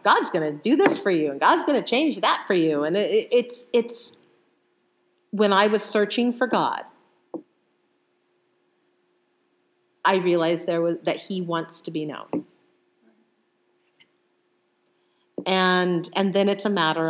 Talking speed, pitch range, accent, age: 135 wpm, 215-320 Hz, American, 40-59